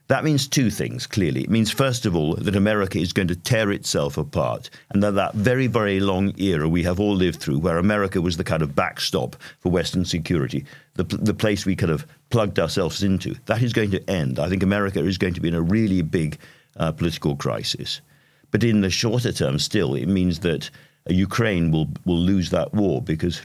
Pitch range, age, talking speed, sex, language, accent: 80-105 Hz, 50-69, 215 wpm, male, English, British